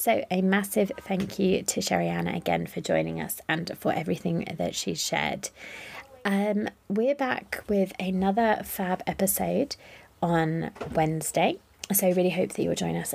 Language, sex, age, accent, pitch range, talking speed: English, female, 20-39, British, 170-210 Hz, 155 wpm